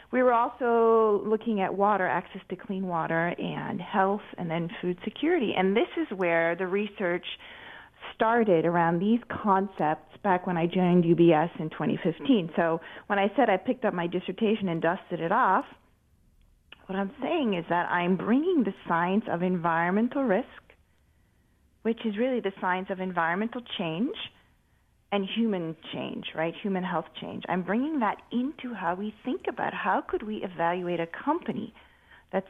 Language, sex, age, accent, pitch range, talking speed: English, female, 30-49, American, 170-225 Hz, 160 wpm